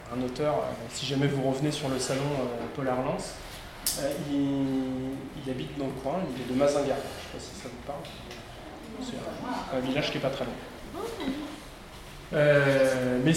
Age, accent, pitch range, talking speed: 20-39, French, 130-160 Hz, 195 wpm